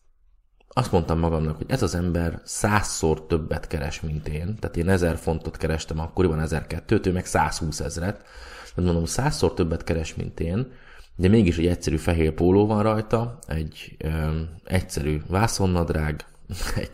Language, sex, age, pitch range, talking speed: Hungarian, male, 20-39, 80-90 Hz, 150 wpm